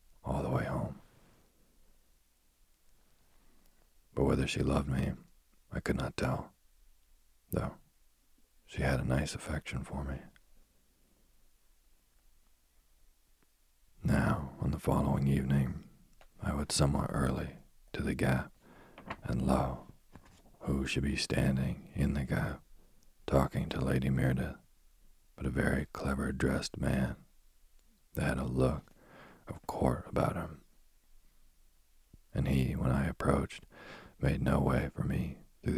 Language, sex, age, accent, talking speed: English, male, 40-59, American, 120 wpm